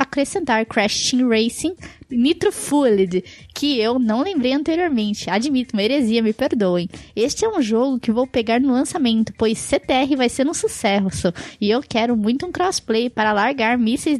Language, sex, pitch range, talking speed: Portuguese, female, 215-275 Hz, 165 wpm